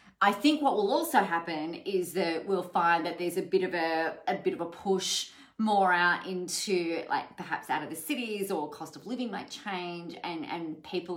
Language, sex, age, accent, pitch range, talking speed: English, female, 30-49, Australian, 155-205 Hz, 210 wpm